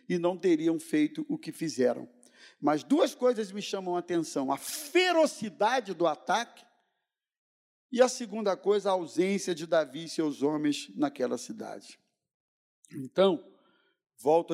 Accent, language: Brazilian, Portuguese